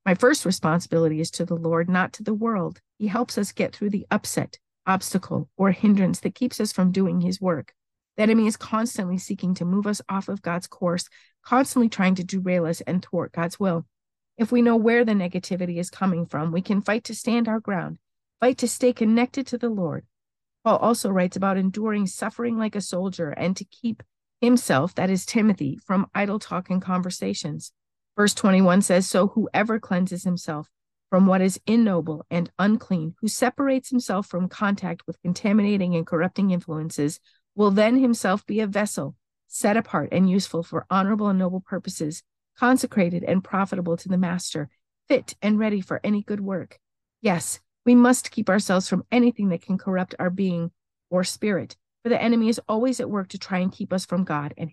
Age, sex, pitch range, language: 50-69, female, 175-215 Hz, English